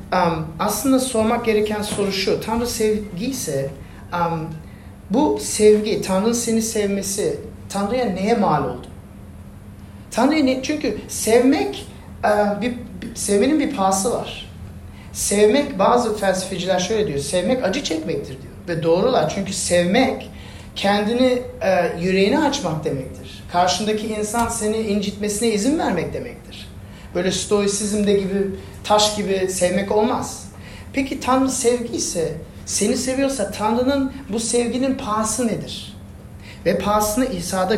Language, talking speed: Turkish, 110 wpm